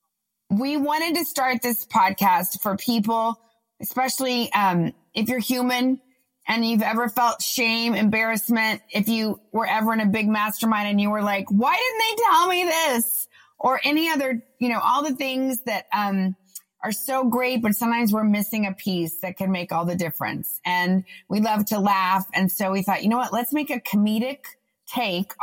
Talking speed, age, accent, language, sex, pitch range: 185 wpm, 30-49, American, English, female, 200-250 Hz